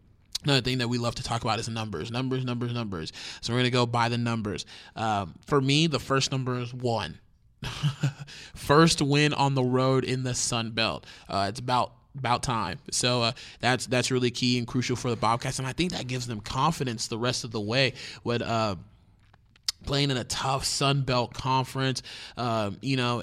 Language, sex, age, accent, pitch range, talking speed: English, male, 20-39, American, 120-135 Hz, 200 wpm